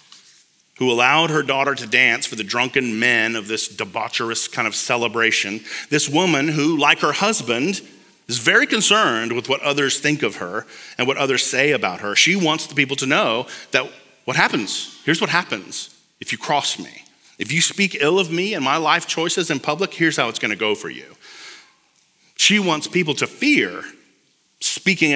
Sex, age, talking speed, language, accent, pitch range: male, 40-59, 185 wpm, English, American, 120-165 Hz